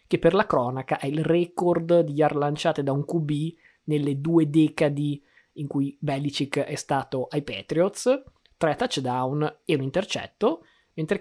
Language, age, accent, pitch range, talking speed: Italian, 20-39, native, 140-165 Hz, 155 wpm